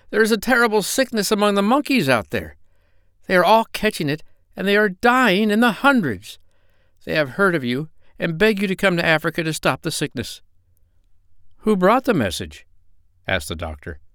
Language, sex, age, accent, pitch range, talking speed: English, male, 60-79, American, 90-145 Hz, 190 wpm